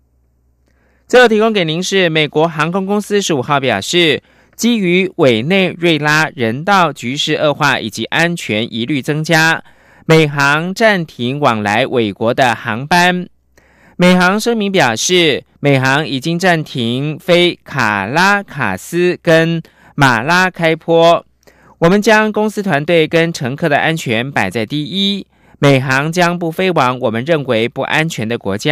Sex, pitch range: male, 120-175 Hz